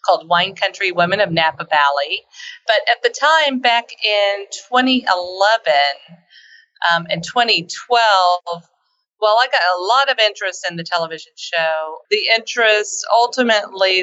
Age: 40-59